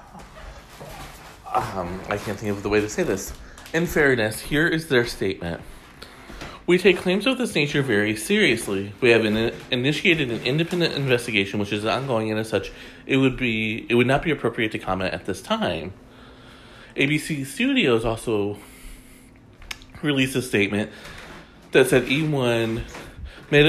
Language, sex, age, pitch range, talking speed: English, male, 30-49, 100-140 Hz, 150 wpm